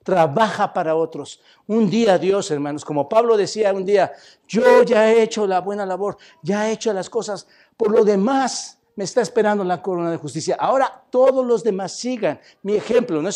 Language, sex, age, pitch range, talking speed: Spanish, male, 60-79, 145-210 Hz, 195 wpm